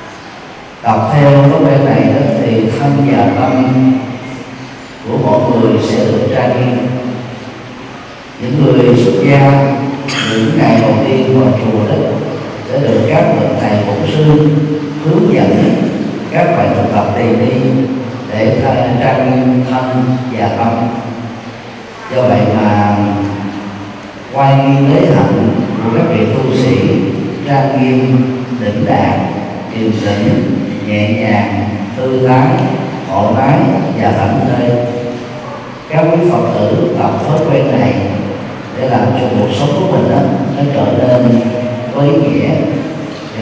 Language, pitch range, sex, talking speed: Vietnamese, 110-130 Hz, male, 135 wpm